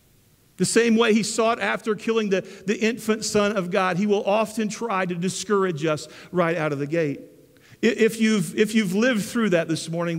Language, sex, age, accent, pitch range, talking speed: English, male, 50-69, American, 160-225 Hz, 200 wpm